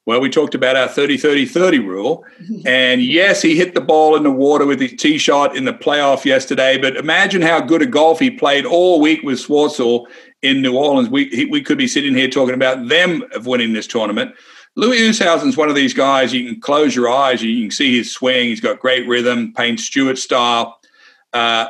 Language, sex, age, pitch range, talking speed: English, male, 50-69, 130-195 Hz, 215 wpm